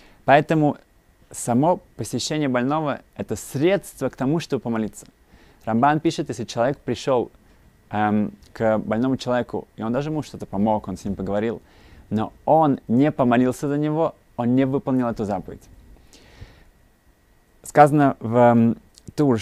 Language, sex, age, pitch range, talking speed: Russian, male, 20-39, 110-135 Hz, 140 wpm